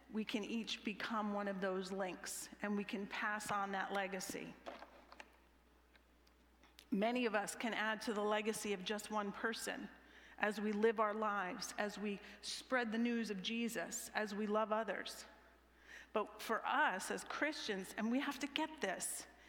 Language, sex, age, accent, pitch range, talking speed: English, female, 40-59, American, 205-240 Hz, 165 wpm